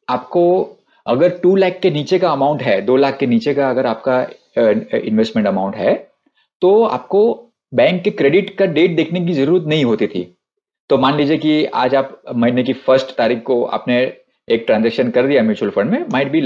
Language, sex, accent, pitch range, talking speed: Hindi, male, native, 130-190 Hz, 195 wpm